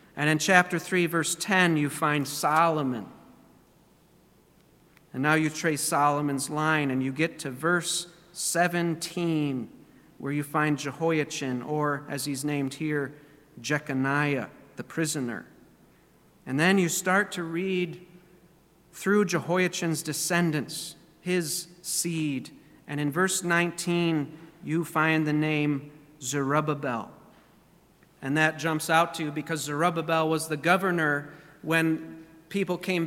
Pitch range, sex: 150-175 Hz, male